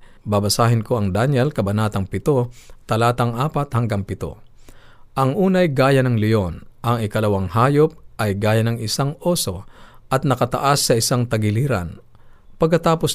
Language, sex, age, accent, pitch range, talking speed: Filipino, male, 50-69, native, 105-130 Hz, 130 wpm